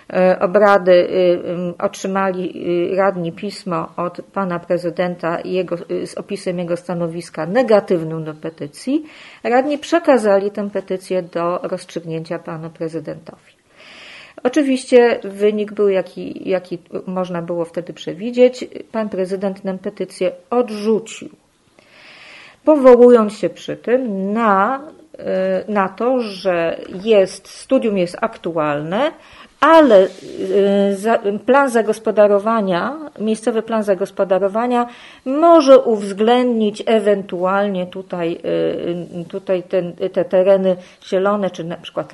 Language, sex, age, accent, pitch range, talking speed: Polish, female, 40-59, native, 180-225 Hz, 95 wpm